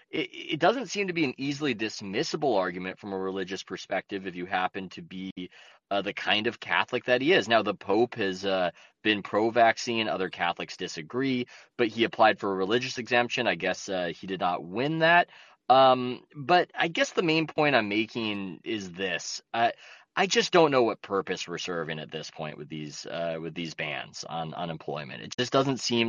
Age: 20-39